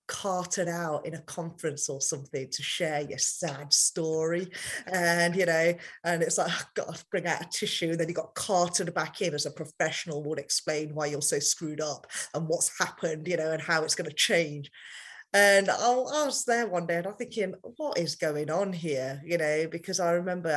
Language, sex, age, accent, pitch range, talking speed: English, female, 30-49, British, 155-195 Hz, 215 wpm